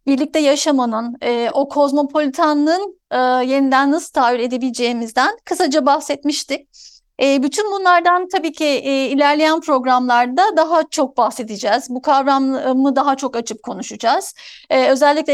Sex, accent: female, native